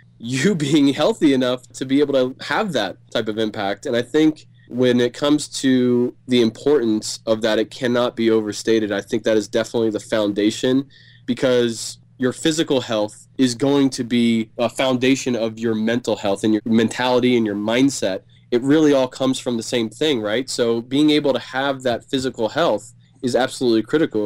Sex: male